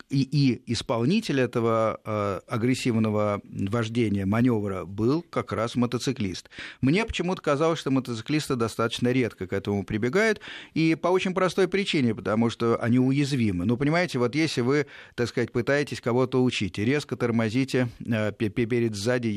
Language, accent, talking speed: Russian, native, 145 wpm